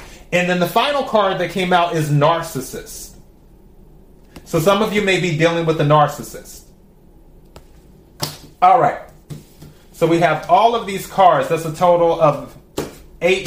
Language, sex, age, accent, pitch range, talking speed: English, male, 30-49, American, 155-190 Hz, 150 wpm